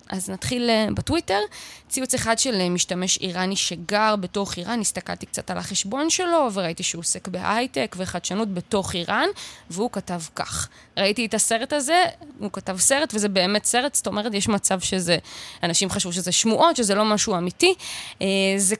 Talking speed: 160 wpm